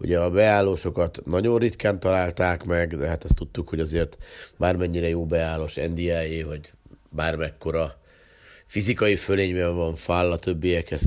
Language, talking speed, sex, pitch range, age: Hungarian, 140 wpm, male, 80-95 Hz, 50-69